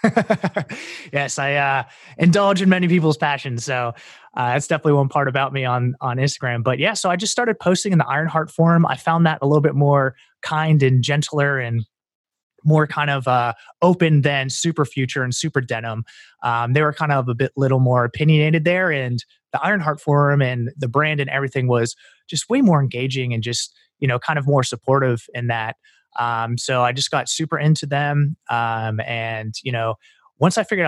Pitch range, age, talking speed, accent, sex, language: 125-155 Hz, 20-39, 200 wpm, American, male, English